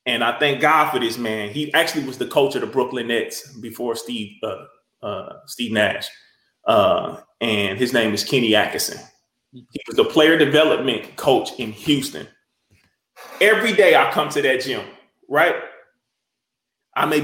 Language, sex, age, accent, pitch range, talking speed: English, male, 20-39, American, 150-220 Hz, 155 wpm